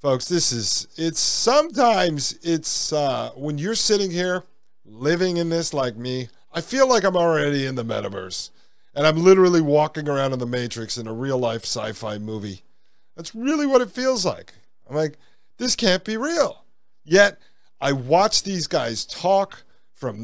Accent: American